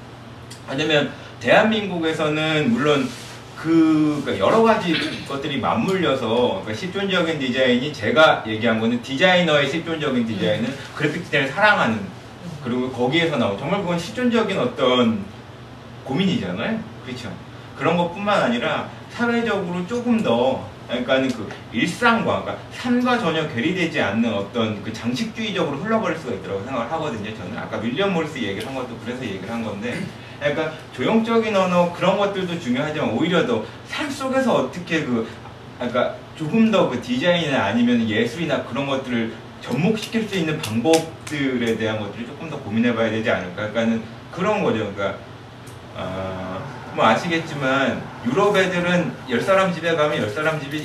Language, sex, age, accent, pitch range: Korean, male, 40-59, native, 120-180 Hz